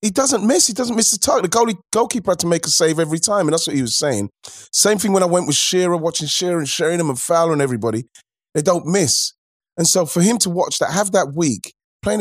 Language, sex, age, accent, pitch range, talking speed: English, male, 30-49, British, 125-175 Hz, 265 wpm